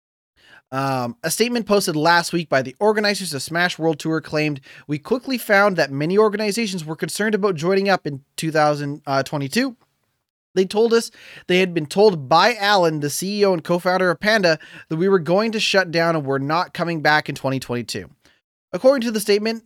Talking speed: 185 wpm